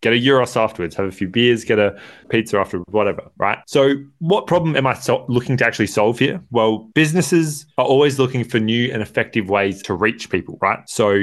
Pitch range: 95-125 Hz